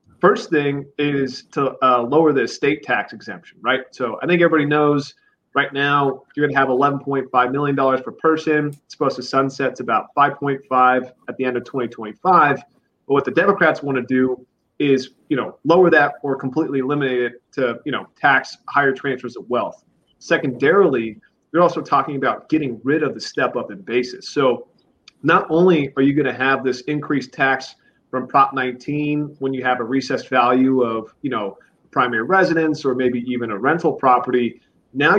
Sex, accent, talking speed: male, American, 180 wpm